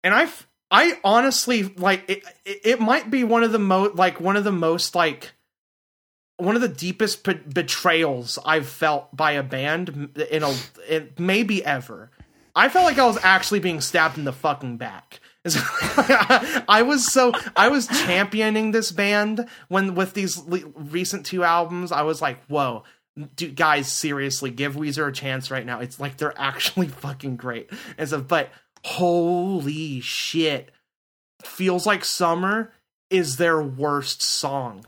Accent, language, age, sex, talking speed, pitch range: American, English, 30-49, male, 165 wpm, 150-225 Hz